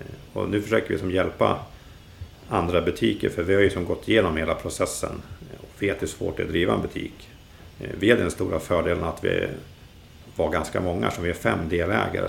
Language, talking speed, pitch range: Swedish, 205 wpm, 85-100 Hz